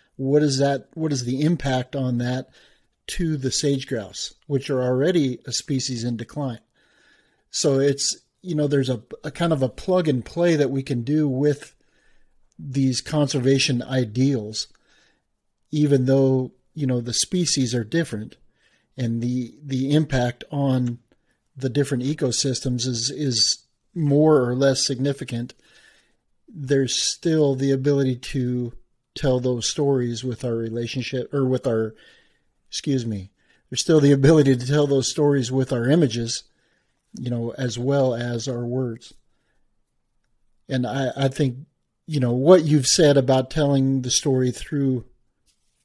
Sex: male